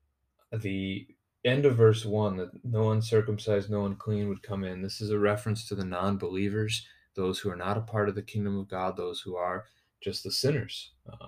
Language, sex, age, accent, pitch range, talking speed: English, male, 30-49, American, 95-110 Hz, 200 wpm